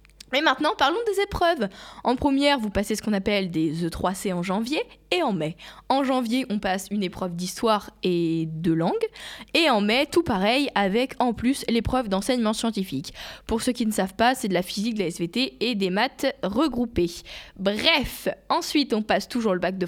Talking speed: 195 wpm